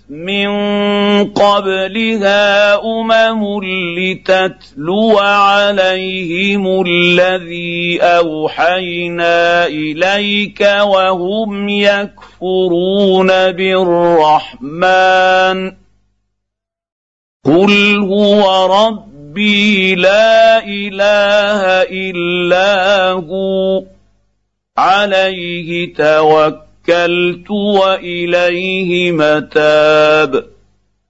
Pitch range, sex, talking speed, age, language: 170-200 Hz, male, 45 wpm, 50-69, Arabic